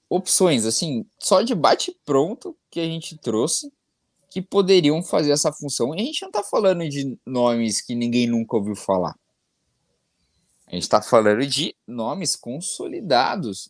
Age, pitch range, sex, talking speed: 20-39, 105-165 Hz, male, 150 wpm